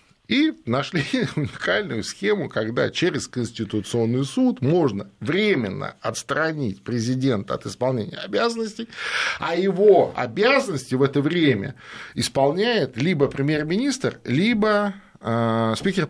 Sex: male